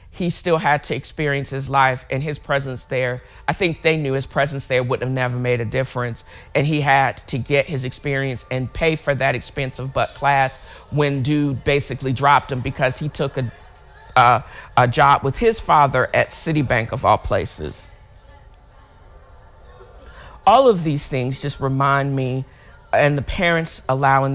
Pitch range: 125-150 Hz